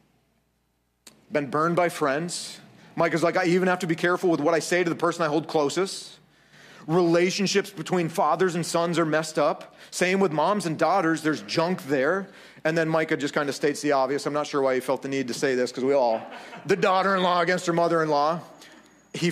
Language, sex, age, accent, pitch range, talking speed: English, male, 40-59, American, 135-175 Hz, 210 wpm